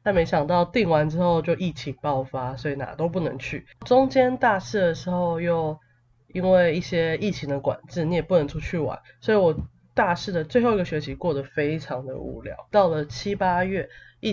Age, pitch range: 20-39, 140-180 Hz